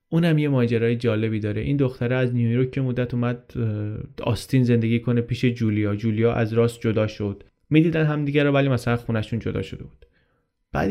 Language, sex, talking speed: Persian, male, 180 wpm